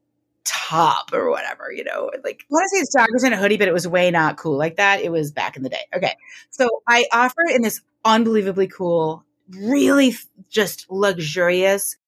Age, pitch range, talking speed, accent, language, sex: 30-49, 170-255 Hz, 200 wpm, American, English, female